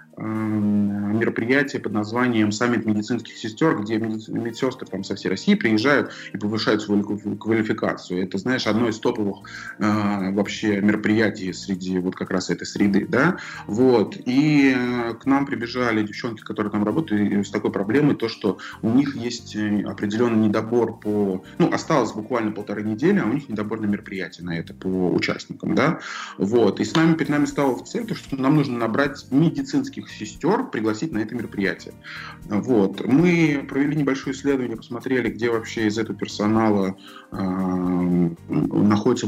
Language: Russian